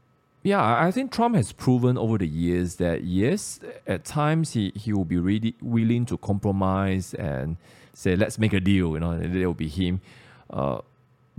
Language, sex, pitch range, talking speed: English, male, 90-125 Hz, 180 wpm